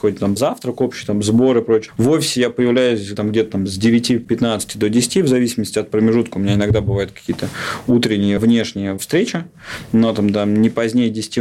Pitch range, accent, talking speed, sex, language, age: 105-120 Hz, native, 185 wpm, male, Russian, 20-39